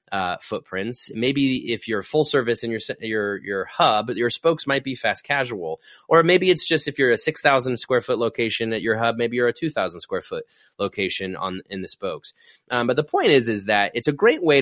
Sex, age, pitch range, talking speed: male, 20-39, 100-135 Hz, 230 wpm